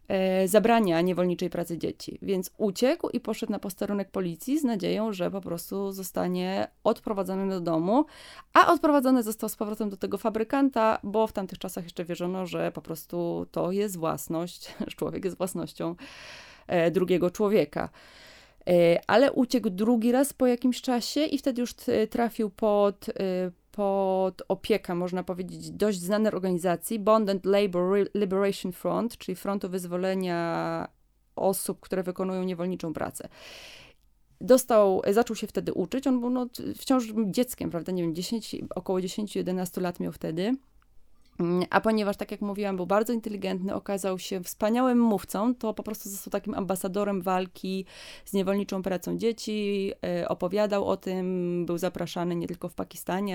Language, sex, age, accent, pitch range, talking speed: Polish, female, 20-39, native, 180-220 Hz, 145 wpm